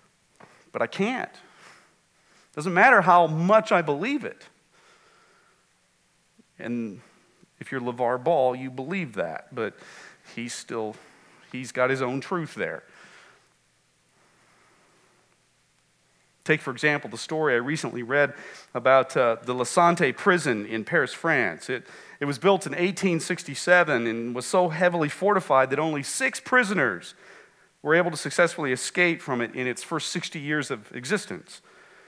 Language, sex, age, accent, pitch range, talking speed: English, male, 40-59, American, 135-185 Hz, 135 wpm